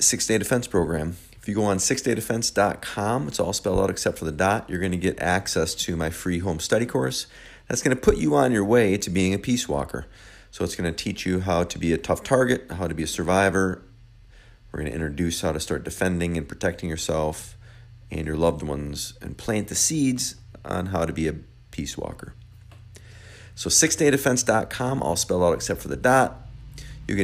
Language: English